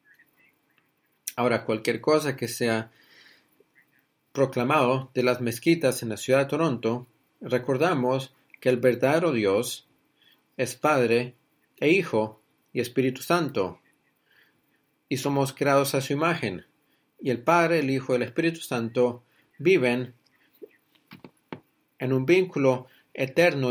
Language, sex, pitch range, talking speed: English, male, 120-150 Hz, 115 wpm